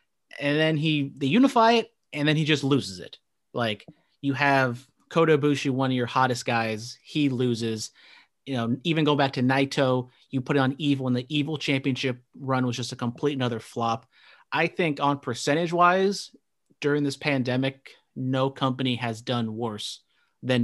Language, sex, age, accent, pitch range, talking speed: English, male, 30-49, American, 125-150 Hz, 175 wpm